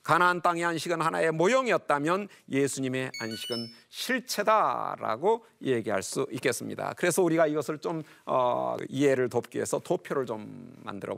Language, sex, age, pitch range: Korean, male, 40-59, 160-225 Hz